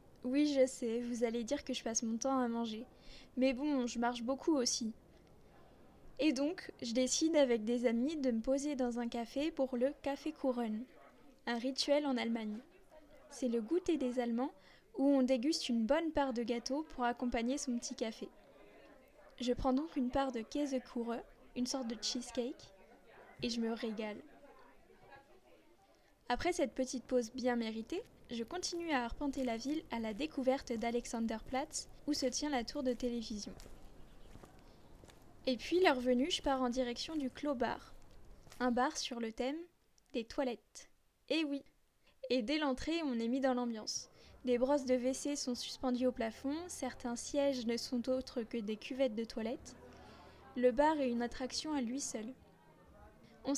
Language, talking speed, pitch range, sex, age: French, 170 wpm, 240-285 Hz, female, 10-29